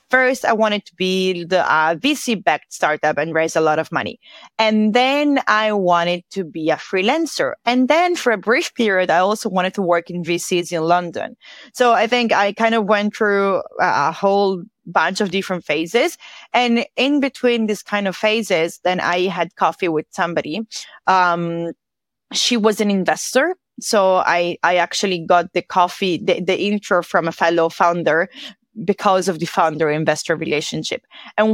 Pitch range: 170-220 Hz